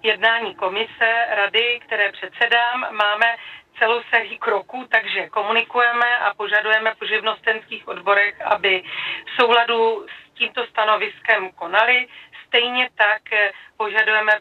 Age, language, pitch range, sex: 40-59, Czech, 215-240 Hz, female